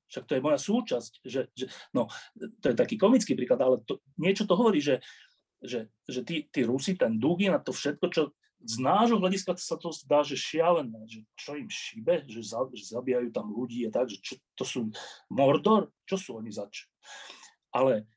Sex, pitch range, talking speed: male, 135-205 Hz, 200 wpm